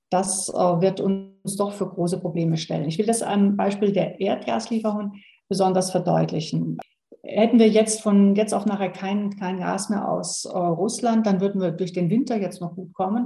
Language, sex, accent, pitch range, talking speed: German, female, German, 180-220 Hz, 180 wpm